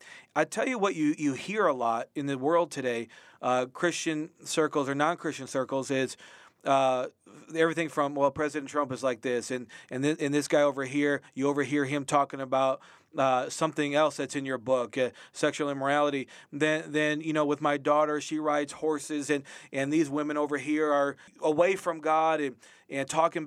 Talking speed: 190 wpm